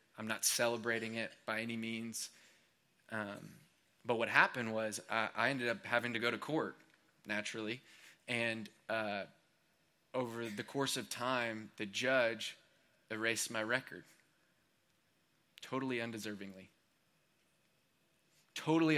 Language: English